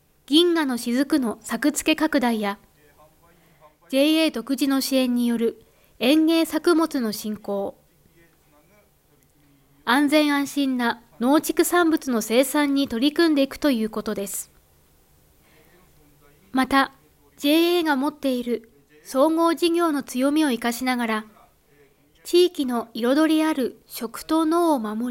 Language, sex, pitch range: Japanese, female, 225-310 Hz